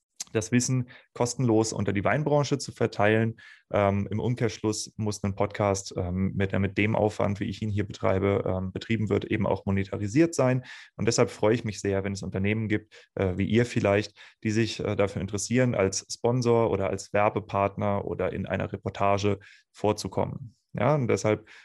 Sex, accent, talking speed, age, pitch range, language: male, German, 175 wpm, 30-49, 100-115 Hz, English